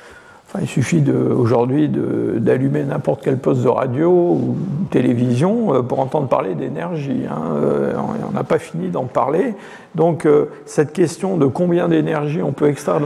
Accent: French